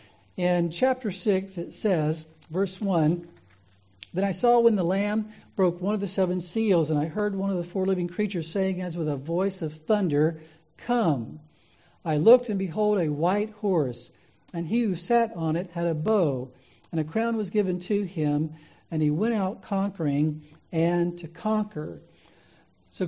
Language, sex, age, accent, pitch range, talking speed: English, male, 60-79, American, 165-210 Hz, 175 wpm